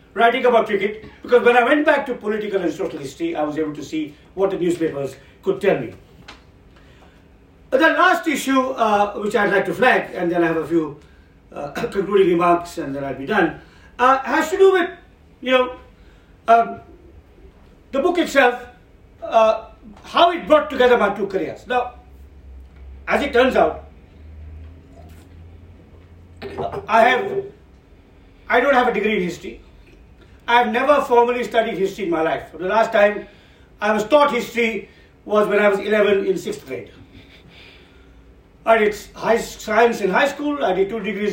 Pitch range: 170-245 Hz